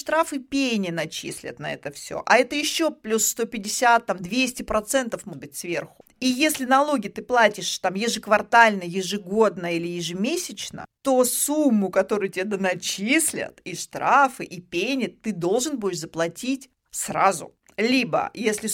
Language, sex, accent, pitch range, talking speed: Russian, female, native, 195-275 Hz, 140 wpm